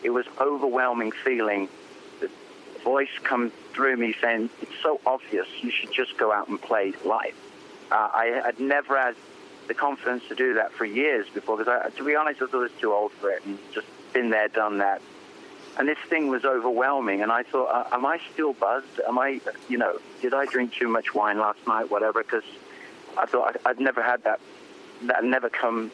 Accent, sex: British, male